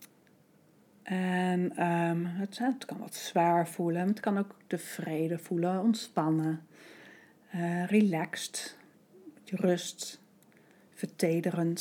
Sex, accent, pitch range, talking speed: female, Dutch, 160-190 Hz, 85 wpm